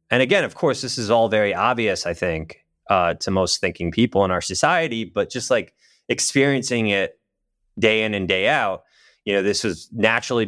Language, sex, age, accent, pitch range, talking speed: English, male, 30-49, American, 90-115 Hz, 195 wpm